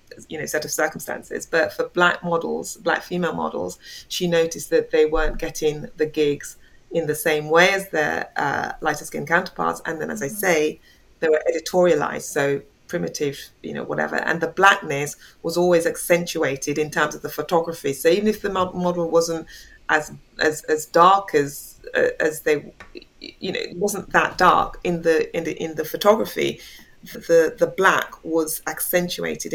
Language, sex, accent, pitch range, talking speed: English, female, British, 155-190 Hz, 175 wpm